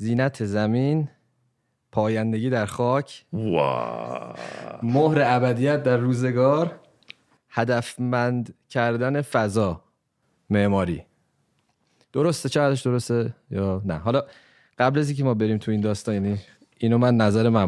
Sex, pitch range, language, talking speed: male, 105-140 Hz, Persian, 105 wpm